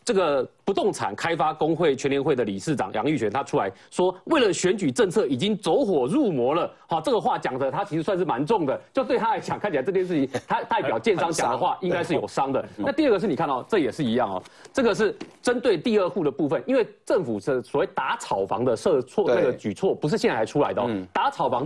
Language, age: Chinese, 30-49